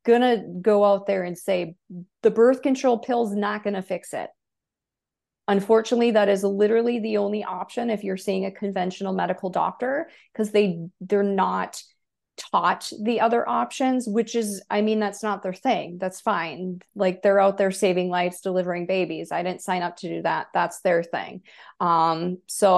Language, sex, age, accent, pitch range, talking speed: English, female, 30-49, American, 175-210 Hz, 175 wpm